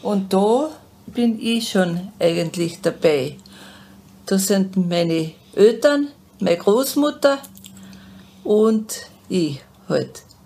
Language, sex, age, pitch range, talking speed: German, female, 50-69, 175-225 Hz, 90 wpm